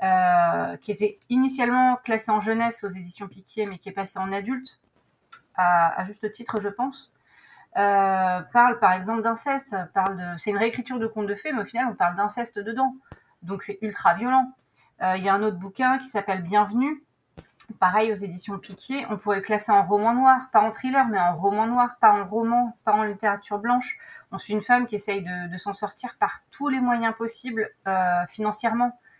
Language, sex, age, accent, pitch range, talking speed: French, female, 30-49, French, 190-235 Hz, 205 wpm